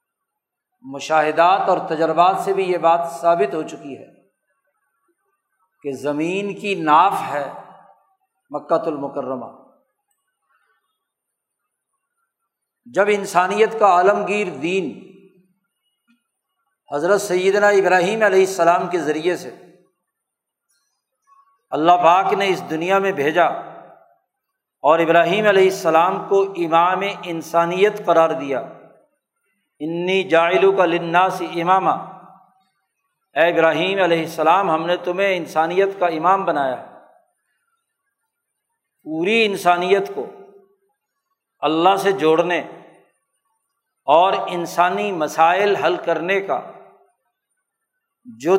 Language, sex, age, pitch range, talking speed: Urdu, male, 50-69, 170-275 Hz, 95 wpm